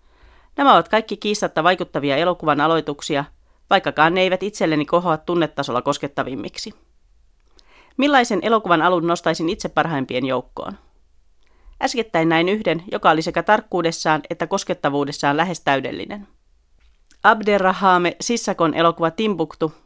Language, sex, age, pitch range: Finnish, female, 30-49, 150-190 Hz